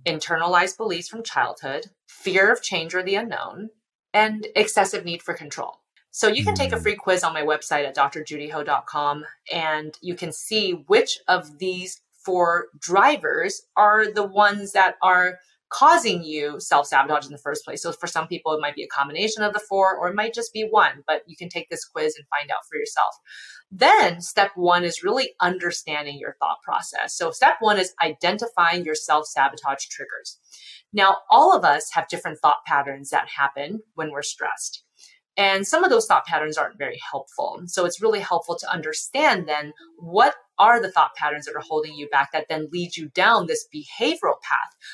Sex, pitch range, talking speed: female, 155-210 Hz, 190 wpm